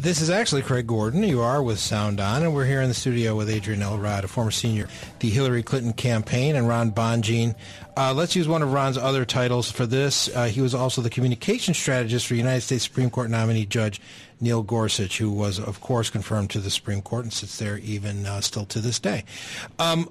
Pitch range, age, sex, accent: 110-135 Hz, 40-59, male, American